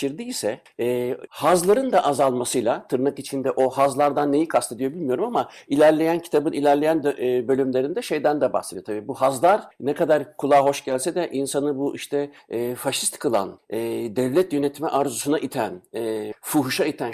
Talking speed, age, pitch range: 160 wpm, 60-79, 135-170 Hz